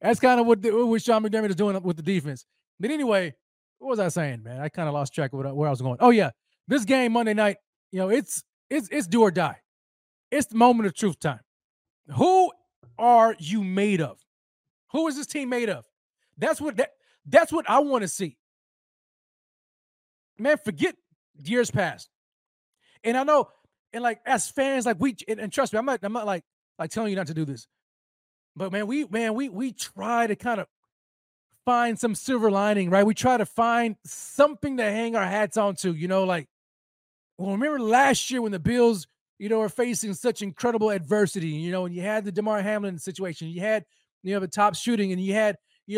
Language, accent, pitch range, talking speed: English, American, 185-235 Hz, 215 wpm